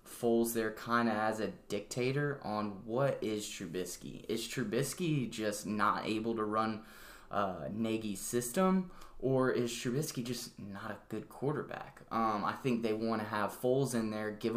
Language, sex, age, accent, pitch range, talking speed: English, male, 10-29, American, 105-120 Hz, 165 wpm